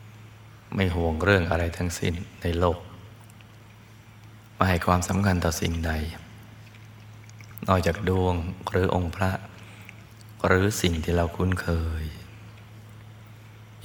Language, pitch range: Thai, 85-110 Hz